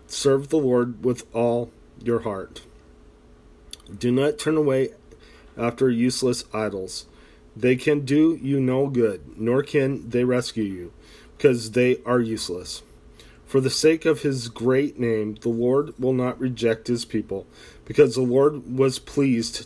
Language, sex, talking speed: English, male, 145 wpm